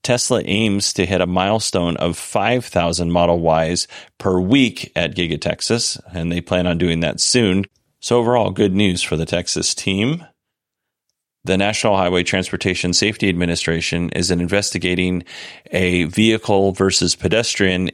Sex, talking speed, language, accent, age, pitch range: male, 140 wpm, English, American, 30-49, 90-105 Hz